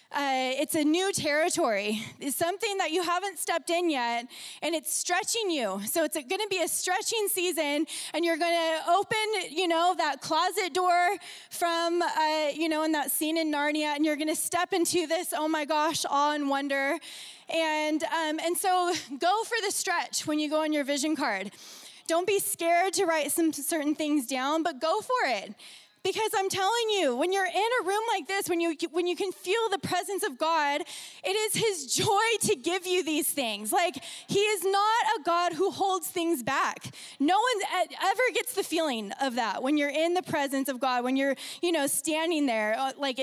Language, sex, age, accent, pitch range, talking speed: English, female, 20-39, American, 285-360 Hz, 205 wpm